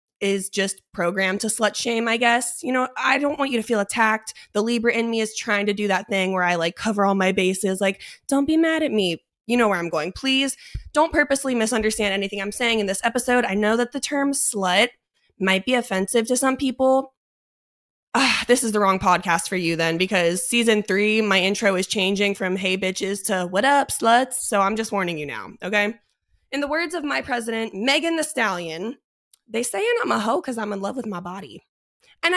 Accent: American